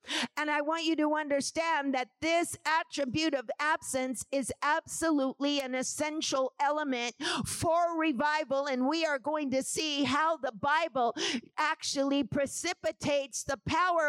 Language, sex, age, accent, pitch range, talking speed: English, female, 50-69, American, 275-325 Hz, 130 wpm